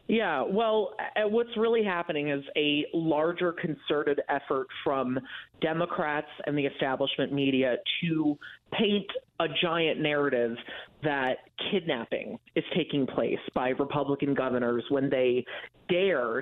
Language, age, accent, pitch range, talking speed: English, 30-49, American, 135-160 Hz, 115 wpm